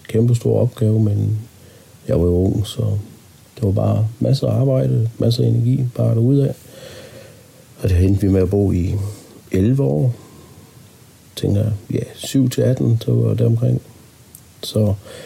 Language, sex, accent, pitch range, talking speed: Danish, male, native, 100-120 Hz, 165 wpm